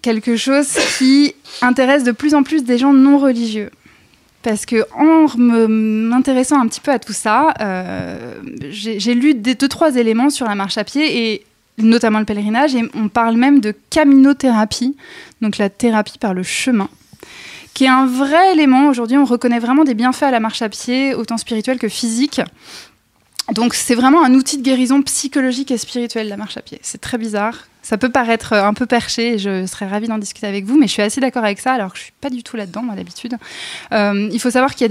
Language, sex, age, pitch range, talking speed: French, female, 20-39, 215-260 Hz, 215 wpm